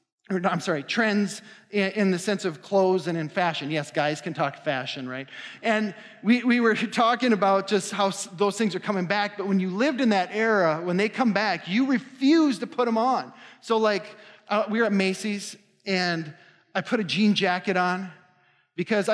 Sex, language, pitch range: male, English, 170-220 Hz